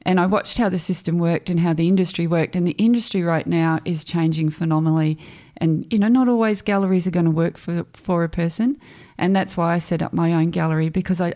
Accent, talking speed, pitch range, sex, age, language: Australian, 230 wpm, 165-200 Hz, female, 30-49, English